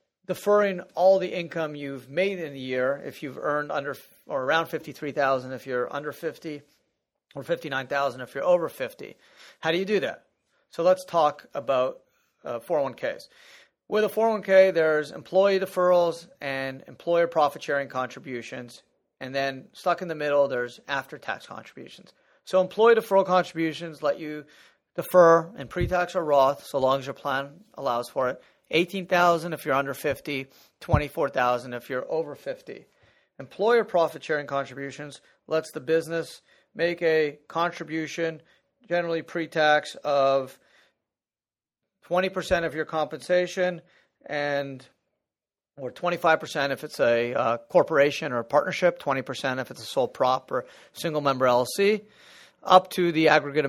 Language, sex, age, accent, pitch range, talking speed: English, male, 40-59, American, 140-180 Hz, 140 wpm